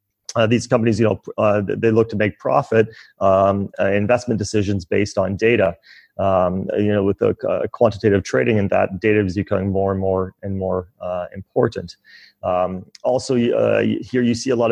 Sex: male